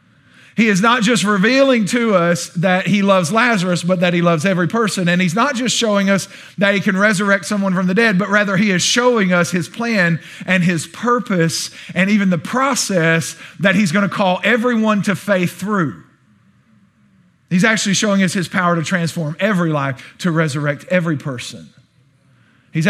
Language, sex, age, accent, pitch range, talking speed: English, male, 40-59, American, 155-195 Hz, 185 wpm